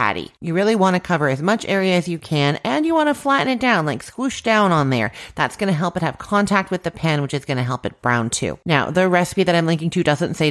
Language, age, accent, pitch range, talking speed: English, 40-59, American, 150-200 Hz, 285 wpm